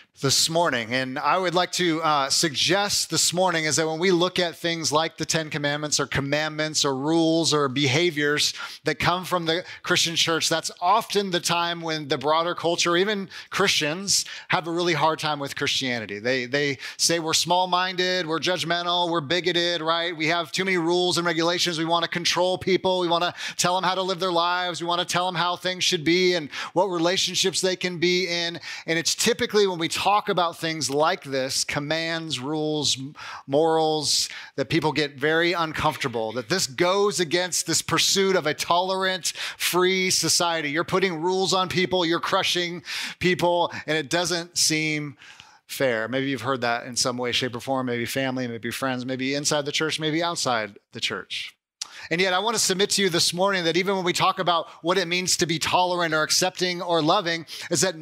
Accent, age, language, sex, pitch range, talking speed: American, 30-49, English, male, 155-180 Hz, 200 wpm